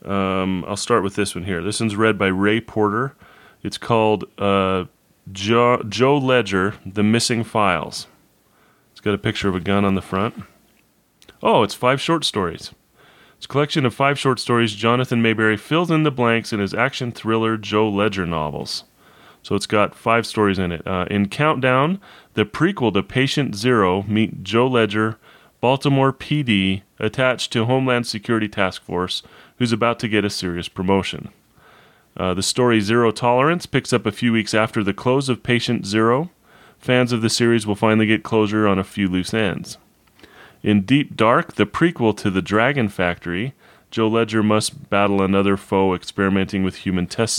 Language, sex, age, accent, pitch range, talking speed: English, male, 30-49, American, 100-125 Hz, 175 wpm